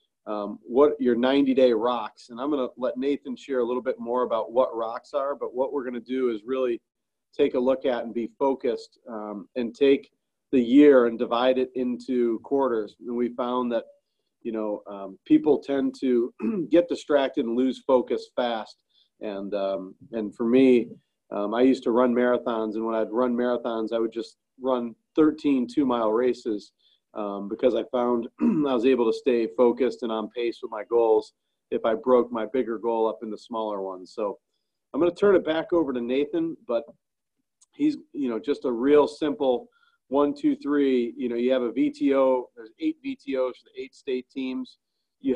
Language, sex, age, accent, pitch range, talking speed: English, male, 40-59, American, 115-135 Hz, 195 wpm